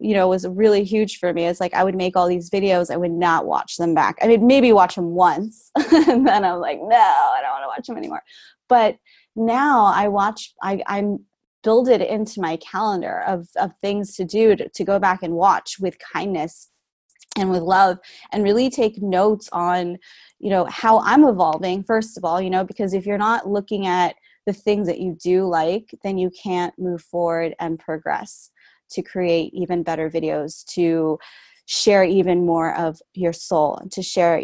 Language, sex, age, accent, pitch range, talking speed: English, female, 20-39, American, 170-205 Hz, 200 wpm